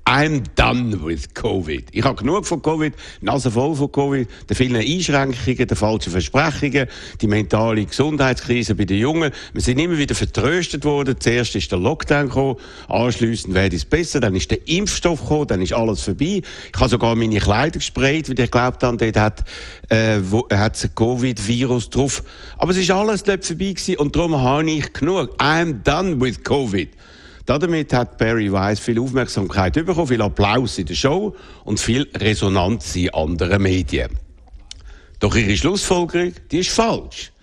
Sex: male